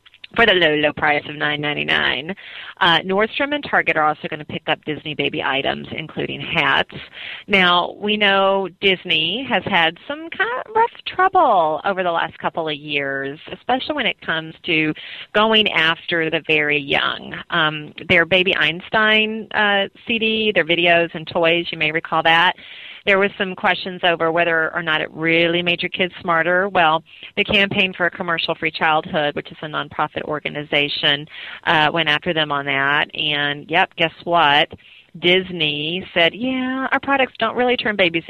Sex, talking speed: female, 170 wpm